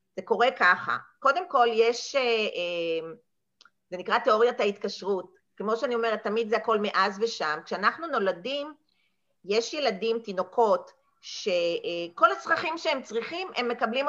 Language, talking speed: Hebrew, 125 wpm